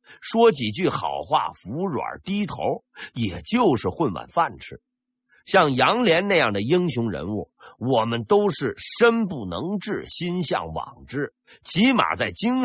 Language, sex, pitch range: Chinese, male, 170-250 Hz